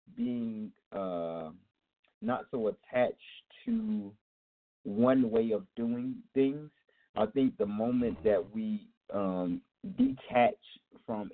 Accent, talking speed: American, 105 wpm